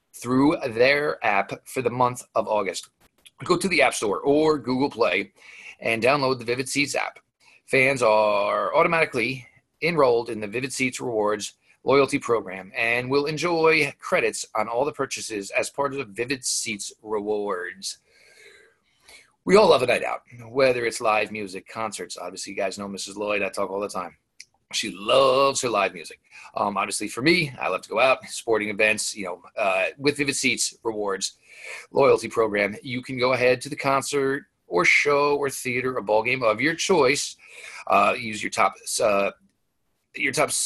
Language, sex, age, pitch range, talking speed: English, male, 30-49, 105-140 Hz, 175 wpm